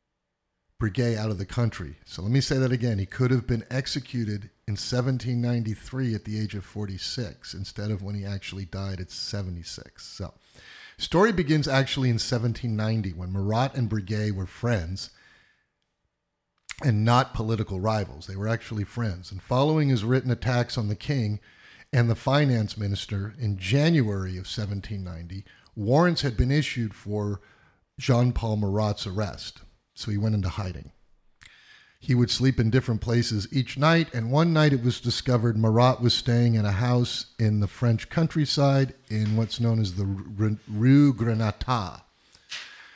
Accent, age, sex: American, 50-69, male